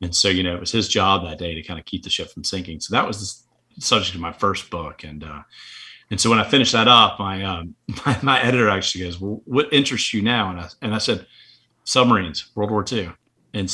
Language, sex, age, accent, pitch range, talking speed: English, male, 30-49, American, 95-115 Hz, 260 wpm